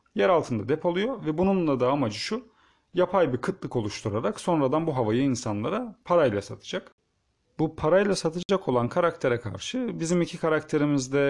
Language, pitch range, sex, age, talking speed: Turkish, 125-175 Hz, male, 40-59, 145 wpm